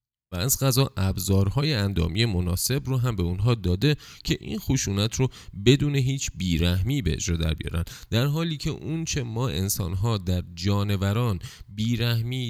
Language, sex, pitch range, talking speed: Persian, male, 85-120 Hz, 150 wpm